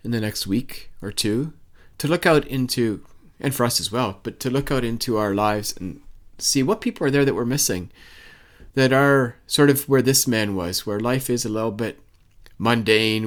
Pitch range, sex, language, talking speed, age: 105-135 Hz, male, English, 210 wpm, 30-49